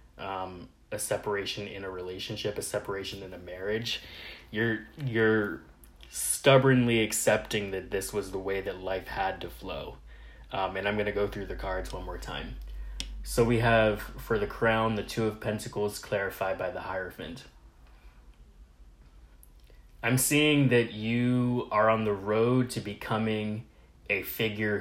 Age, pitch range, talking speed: 20-39, 95-110 Hz, 150 wpm